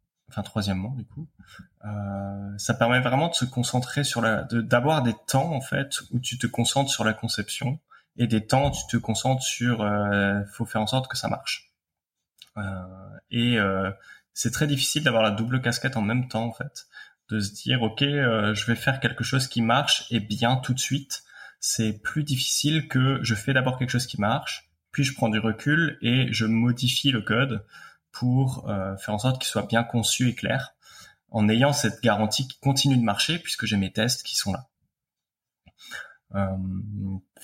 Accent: French